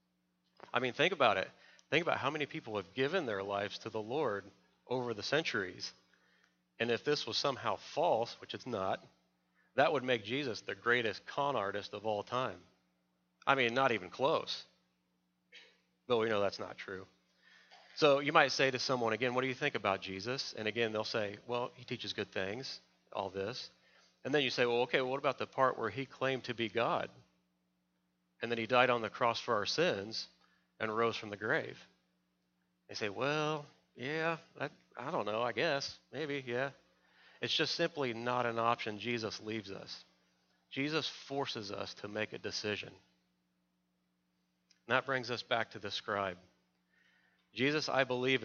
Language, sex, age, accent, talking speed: English, male, 40-59, American, 180 wpm